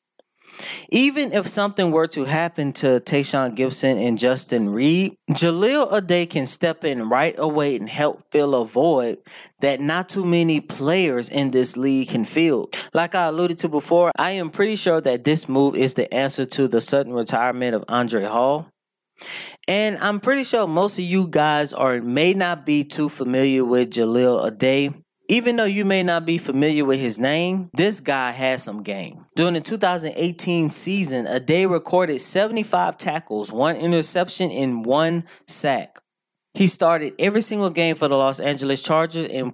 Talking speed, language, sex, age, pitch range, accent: 170 wpm, English, male, 20-39, 135-180 Hz, American